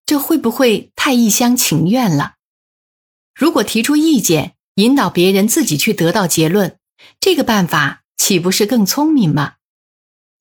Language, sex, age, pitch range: Chinese, female, 50-69, 170-255 Hz